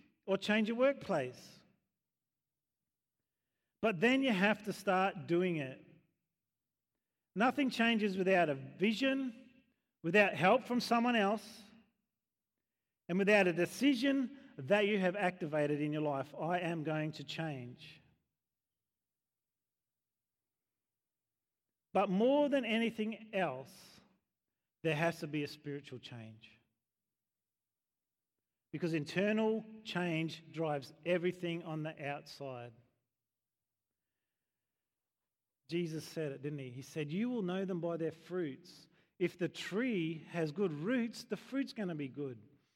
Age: 40-59